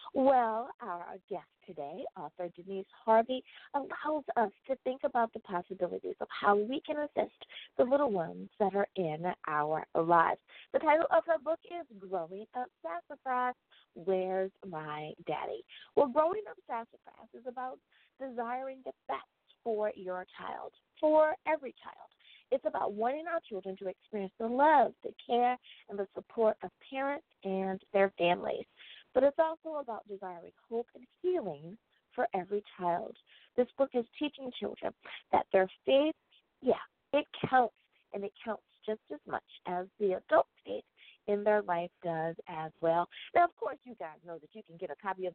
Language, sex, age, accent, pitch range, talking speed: English, female, 30-49, American, 190-275 Hz, 165 wpm